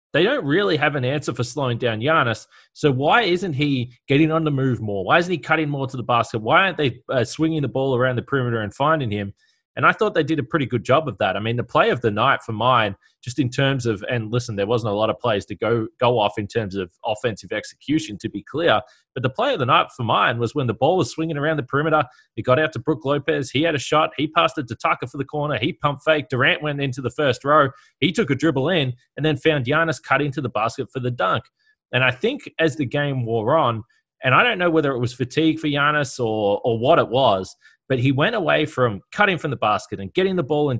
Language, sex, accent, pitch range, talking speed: English, male, Australian, 120-155 Hz, 265 wpm